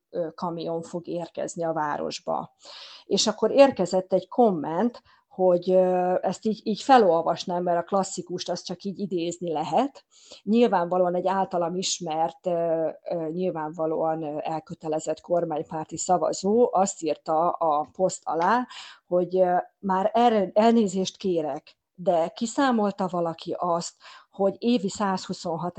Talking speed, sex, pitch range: 110 wpm, female, 170-220 Hz